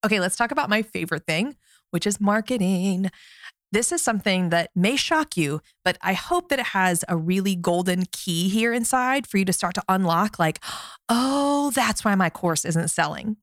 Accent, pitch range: American, 180-235 Hz